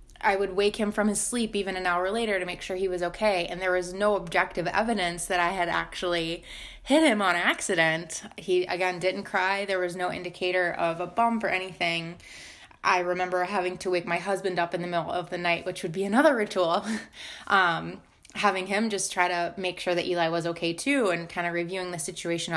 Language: English